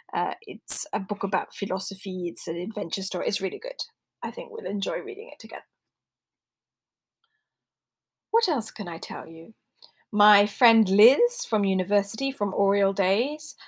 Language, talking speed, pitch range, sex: English, 145 wpm, 195-240 Hz, female